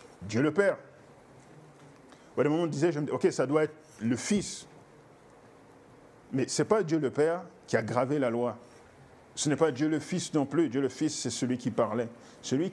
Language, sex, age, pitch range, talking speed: French, male, 50-69, 125-165 Hz, 200 wpm